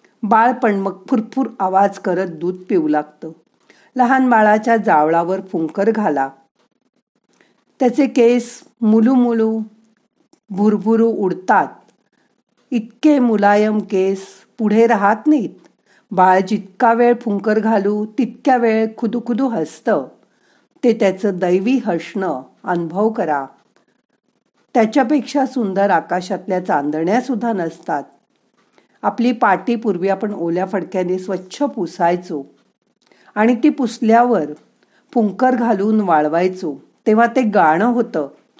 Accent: native